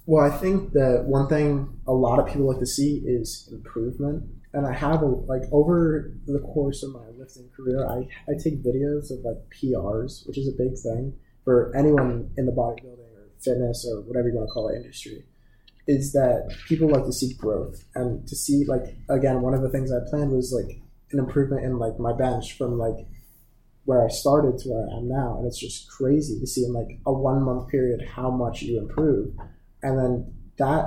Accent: American